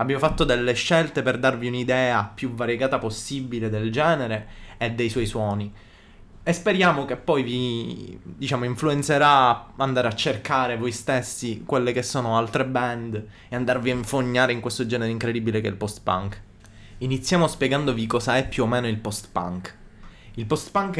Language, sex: Italian, male